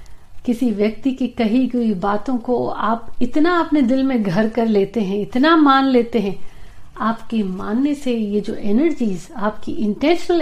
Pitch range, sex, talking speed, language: 205-285 Hz, female, 160 wpm, Hindi